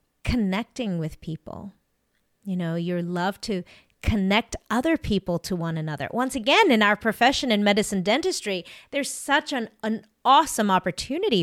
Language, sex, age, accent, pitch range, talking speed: English, female, 30-49, American, 185-245 Hz, 145 wpm